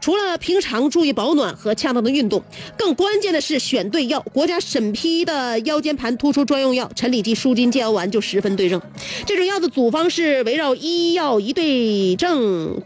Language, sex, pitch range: Chinese, female, 205-280 Hz